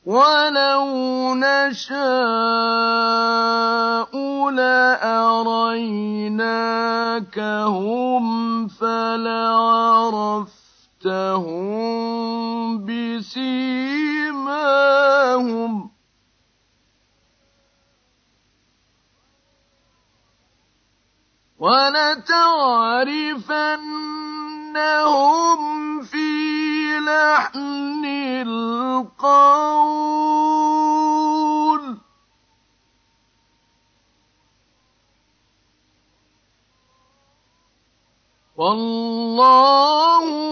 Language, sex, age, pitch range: Arabic, male, 50-69, 225-300 Hz